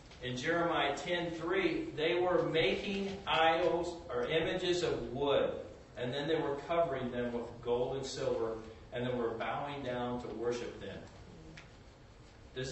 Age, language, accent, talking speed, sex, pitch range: 40-59, Italian, American, 140 wpm, male, 120-165 Hz